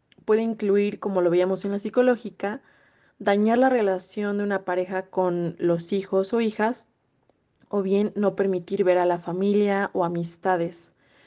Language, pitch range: Spanish, 185-215 Hz